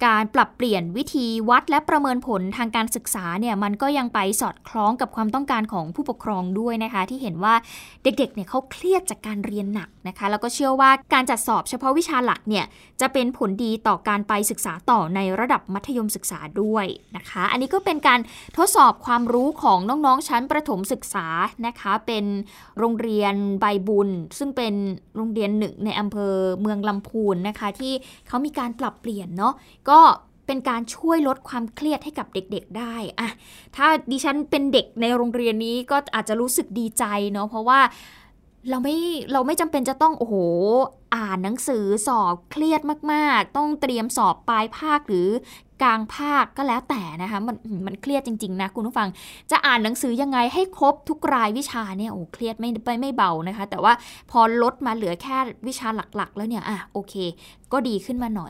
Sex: female